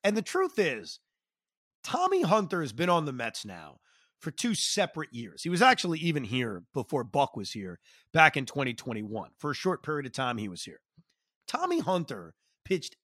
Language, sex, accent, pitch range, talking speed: English, male, American, 135-195 Hz, 185 wpm